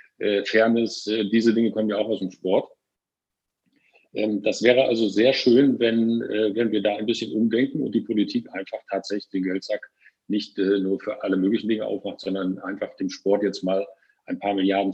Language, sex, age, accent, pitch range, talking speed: German, male, 50-69, German, 95-110 Hz, 175 wpm